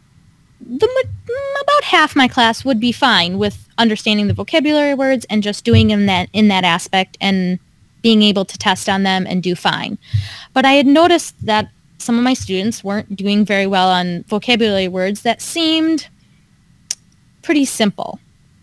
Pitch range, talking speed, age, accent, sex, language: 190-235 Hz, 165 wpm, 20-39, American, female, English